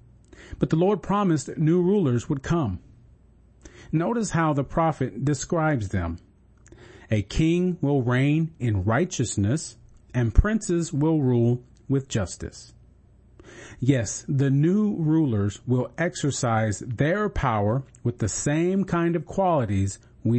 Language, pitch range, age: English, 110-150 Hz, 40-59